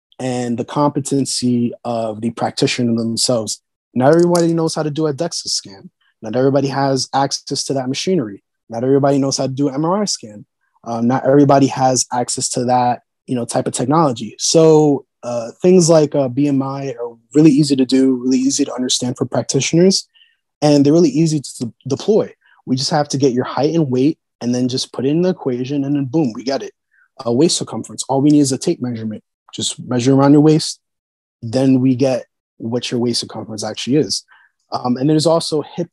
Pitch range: 120-145 Hz